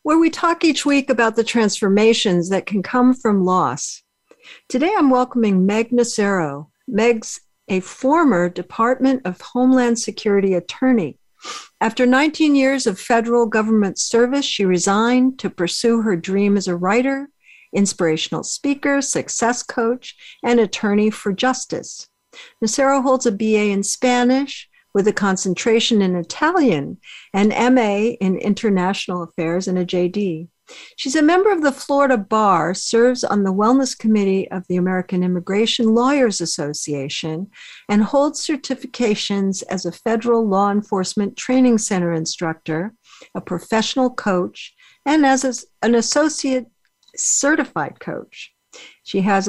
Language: English